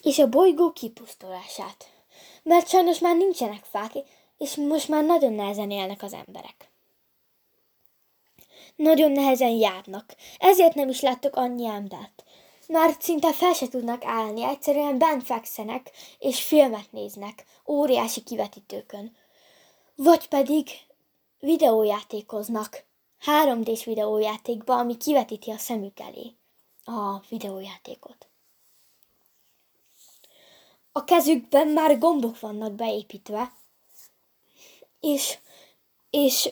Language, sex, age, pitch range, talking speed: Hungarian, female, 10-29, 225-300 Hz, 100 wpm